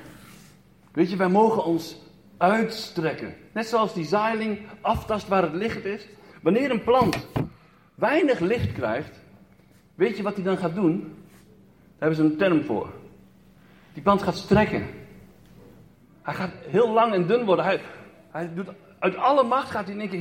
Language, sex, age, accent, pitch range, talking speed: Dutch, male, 60-79, Dutch, 175-235 Hz, 165 wpm